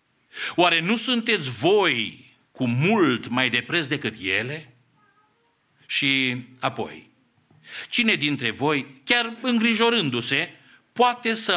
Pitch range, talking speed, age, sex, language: 125-175 Hz, 100 wpm, 60-79, male, English